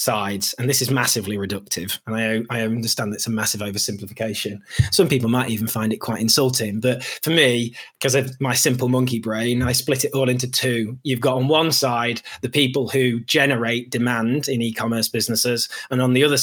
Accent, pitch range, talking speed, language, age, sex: British, 115-140 Hz, 200 wpm, English, 20-39, male